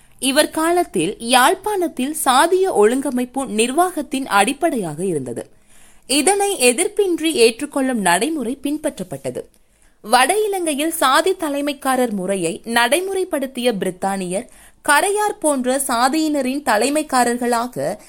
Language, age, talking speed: Tamil, 20-39, 80 wpm